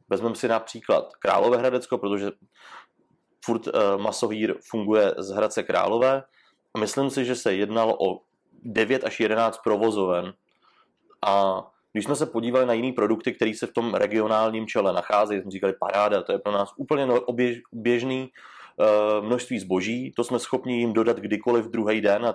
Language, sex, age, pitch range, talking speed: Czech, male, 30-49, 110-125 Hz, 155 wpm